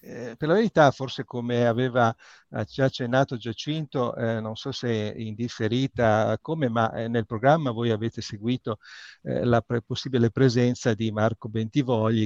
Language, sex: Italian, male